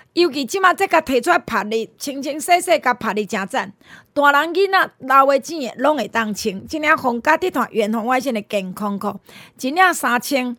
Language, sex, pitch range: Chinese, female, 230-320 Hz